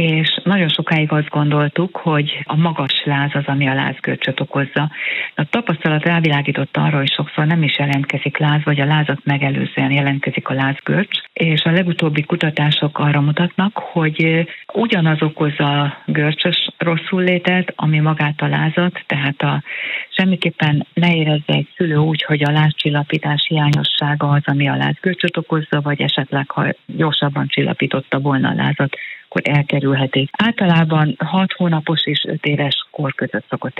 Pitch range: 145-165 Hz